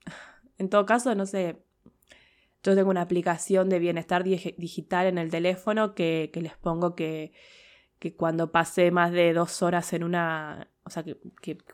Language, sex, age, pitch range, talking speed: Spanish, female, 20-39, 170-195 Hz, 170 wpm